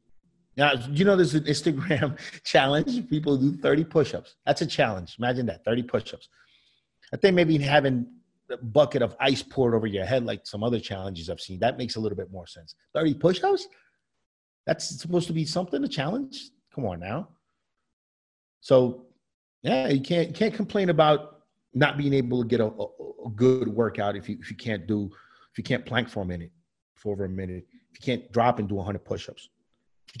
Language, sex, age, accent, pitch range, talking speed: English, male, 30-49, American, 105-150 Hz, 185 wpm